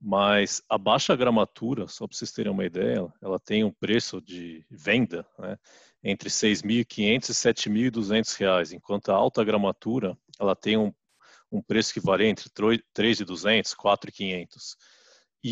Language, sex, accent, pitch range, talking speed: Portuguese, male, Brazilian, 105-120 Hz, 155 wpm